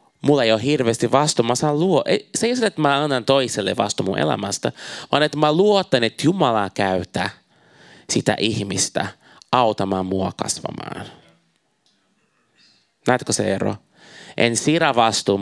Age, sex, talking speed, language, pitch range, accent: 30-49, male, 130 wpm, Finnish, 105-150 Hz, native